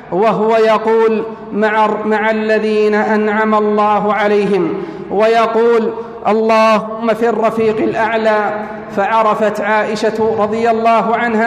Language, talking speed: Arabic, 90 wpm